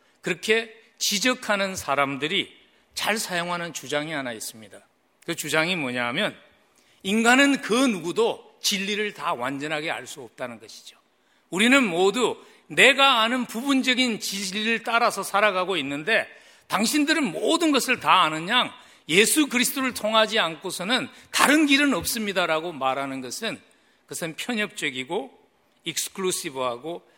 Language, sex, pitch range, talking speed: English, male, 155-235 Hz, 100 wpm